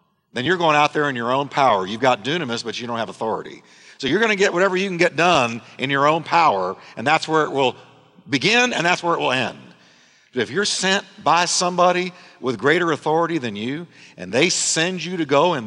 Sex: male